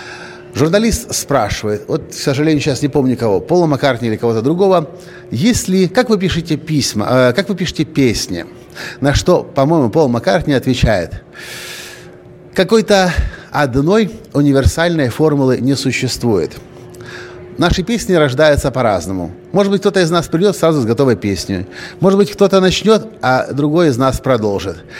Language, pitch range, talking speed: Russian, 125-170 Hz, 140 wpm